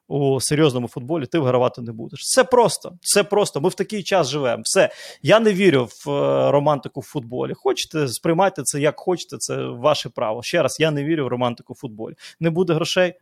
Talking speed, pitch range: 205 wpm, 130-170 Hz